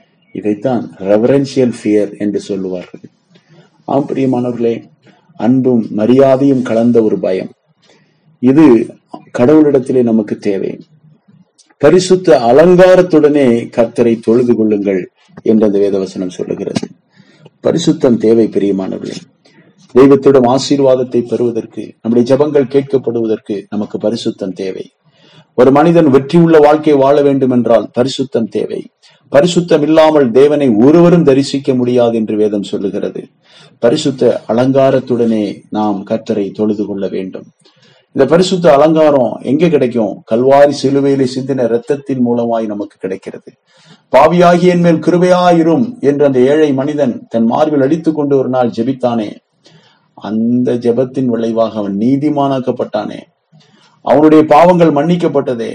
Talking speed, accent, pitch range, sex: 90 wpm, native, 115-150 Hz, male